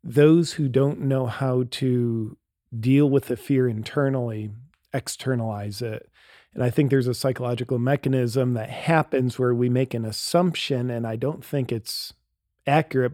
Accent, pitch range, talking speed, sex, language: American, 120-140 Hz, 150 wpm, male, English